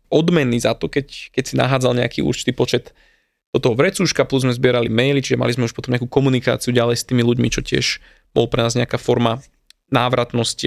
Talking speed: 200 wpm